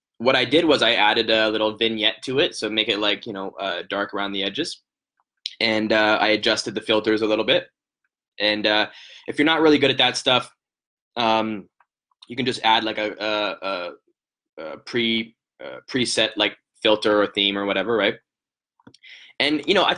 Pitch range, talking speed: 110-135 Hz, 195 wpm